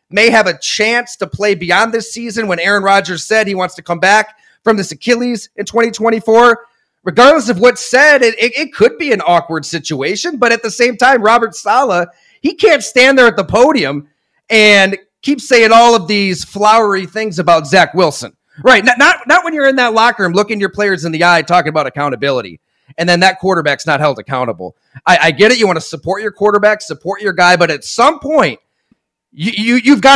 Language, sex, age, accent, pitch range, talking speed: English, male, 30-49, American, 165-230 Hz, 215 wpm